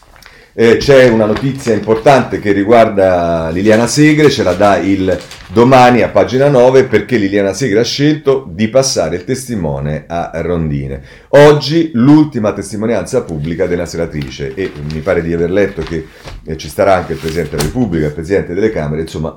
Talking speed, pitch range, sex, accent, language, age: 165 wpm, 85-135 Hz, male, native, Italian, 40-59